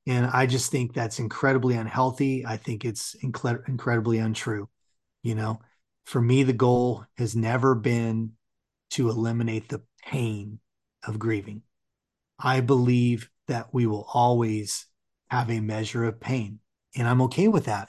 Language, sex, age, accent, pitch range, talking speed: English, male, 30-49, American, 110-130 Hz, 145 wpm